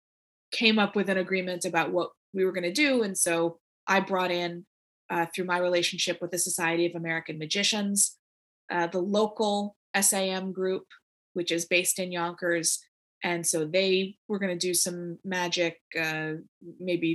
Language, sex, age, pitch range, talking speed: English, female, 20-39, 175-205 Hz, 160 wpm